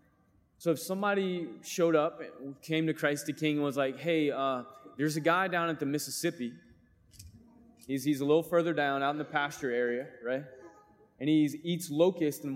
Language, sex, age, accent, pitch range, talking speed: English, male, 20-39, American, 145-185 Hz, 190 wpm